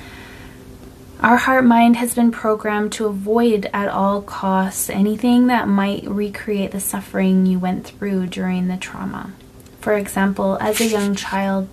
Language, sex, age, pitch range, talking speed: English, female, 20-39, 190-215 Hz, 145 wpm